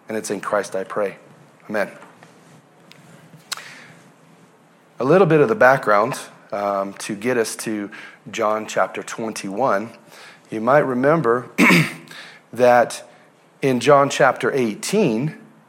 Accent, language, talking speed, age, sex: American, English, 110 wpm, 40-59, male